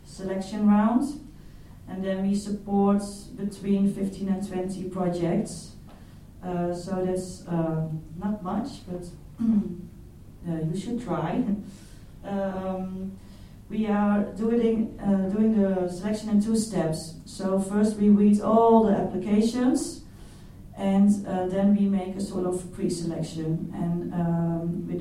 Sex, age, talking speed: female, 30-49, 125 wpm